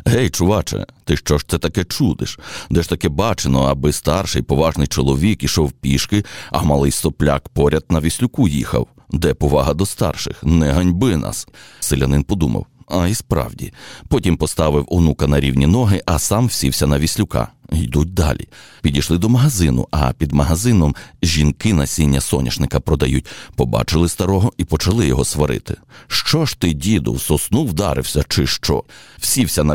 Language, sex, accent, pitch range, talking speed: Ukrainian, male, native, 75-95 Hz, 155 wpm